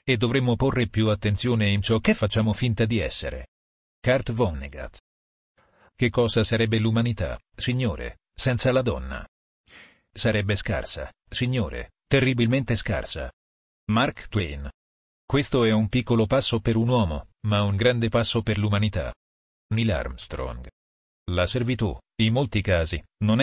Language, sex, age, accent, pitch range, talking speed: Italian, male, 40-59, native, 80-120 Hz, 130 wpm